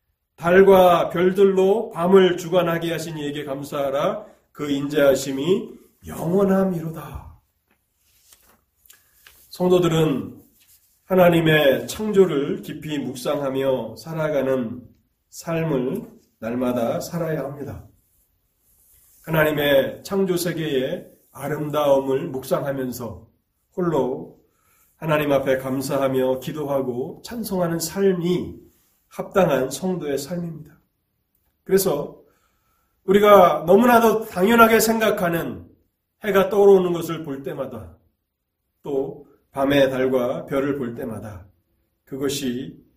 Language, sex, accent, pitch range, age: Korean, male, native, 120-175 Hz, 40-59